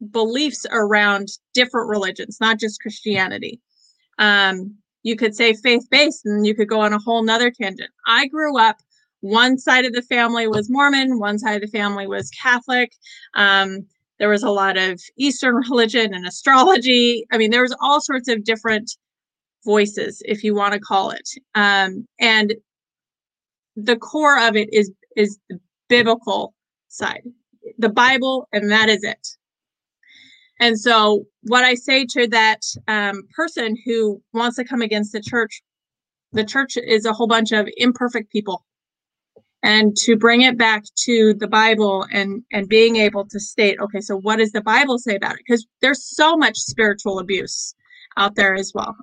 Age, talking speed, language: 30-49, 170 wpm, English